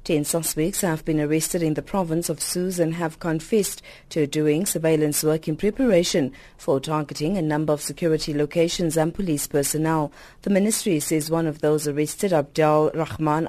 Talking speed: 170 wpm